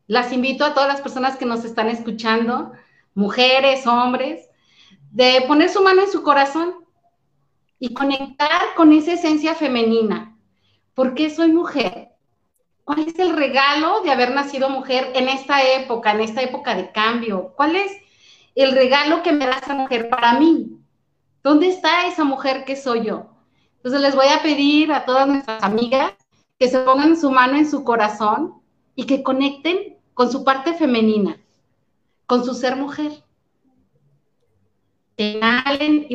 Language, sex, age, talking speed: Spanish, female, 30-49, 155 wpm